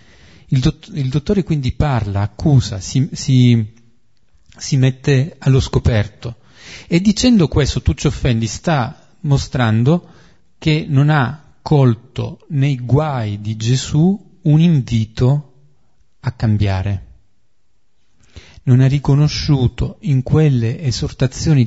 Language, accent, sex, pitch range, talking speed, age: Italian, native, male, 115-150 Hz, 100 wpm, 40-59